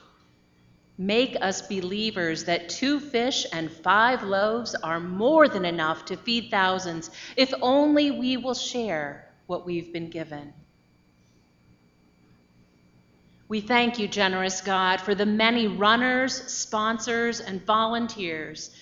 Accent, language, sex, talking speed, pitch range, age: American, English, female, 120 wpm, 155-225 Hz, 40-59